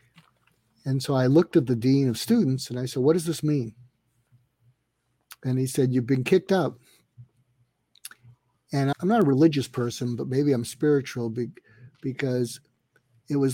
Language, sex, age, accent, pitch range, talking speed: English, male, 50-69, American, 120-150 Hz, 160 wpm